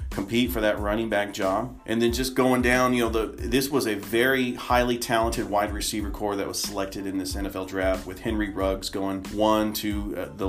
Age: 30-49